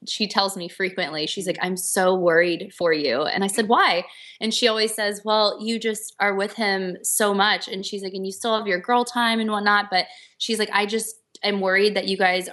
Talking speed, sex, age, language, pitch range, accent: 235 wpm, female, 20-39, English, 180-215 Hz, American